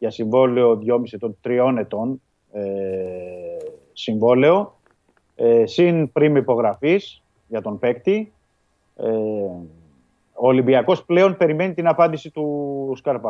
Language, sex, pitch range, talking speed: Greek, male, 115-150 Hz, 110 wpm